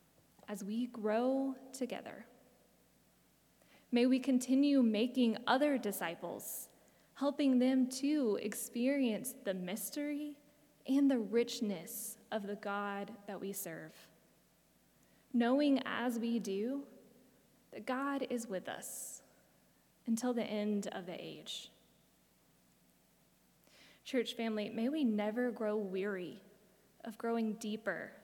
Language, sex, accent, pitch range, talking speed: English, female, American, 205-245 Hz, 105 wpm